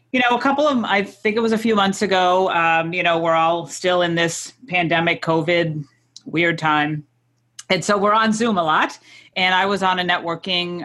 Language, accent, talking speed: English, American, 205 wpm